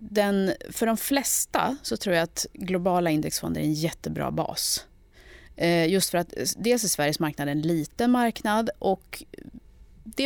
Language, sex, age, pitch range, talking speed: Swedish, female, 30-49, 160-220 Hz, 160 wpm